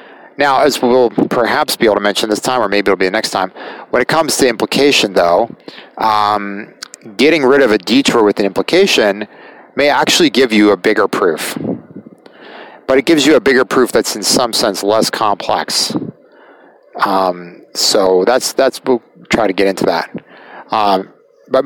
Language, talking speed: English, 175 wpm